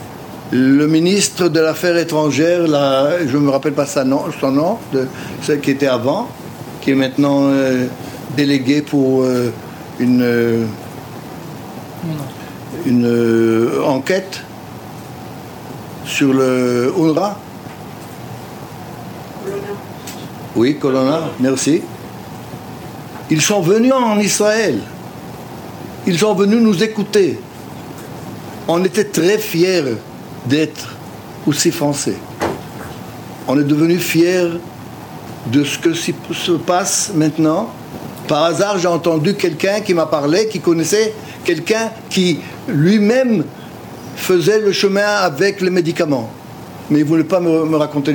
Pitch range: 135-180 Hz